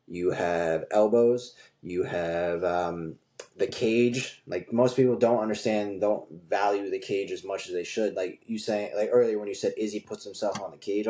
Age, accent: 20-39, American